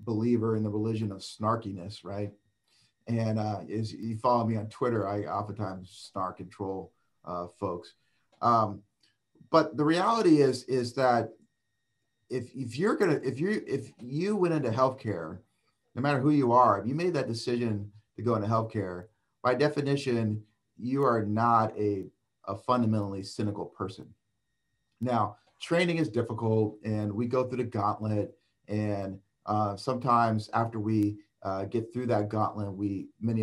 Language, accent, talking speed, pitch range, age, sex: English, American, 155 wpm, 105-125 Hz, 30-49, male